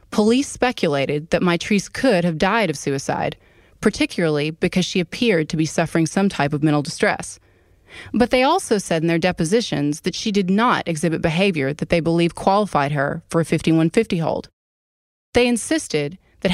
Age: 20-39